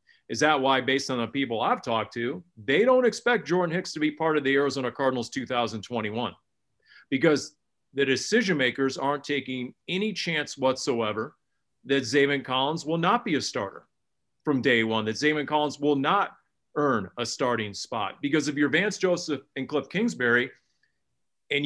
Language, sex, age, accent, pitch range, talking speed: English, male, 40-59, American, 125-160 Hz, 170 wpm